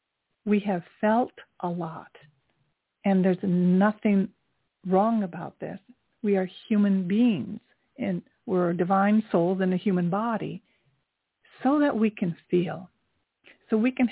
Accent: American